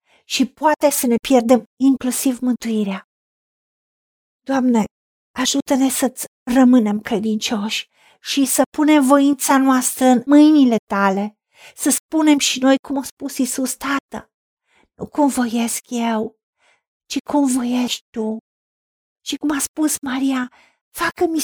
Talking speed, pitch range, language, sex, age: 120 wpm, 245-310 Hz, Romanian, female, 50-69